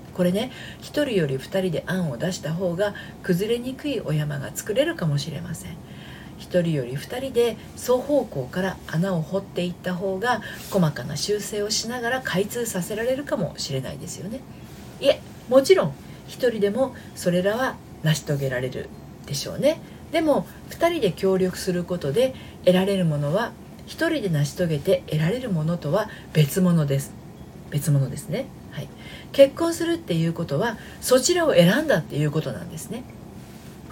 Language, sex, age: Japanese, female, 50-69